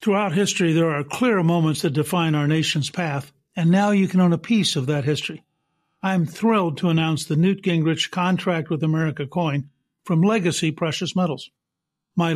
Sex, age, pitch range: male, 60-79, 155-190 Hz